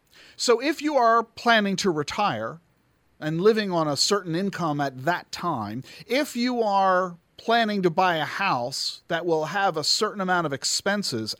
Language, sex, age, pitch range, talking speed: English, male, 50-69, 155-220 Hz, 170 wpm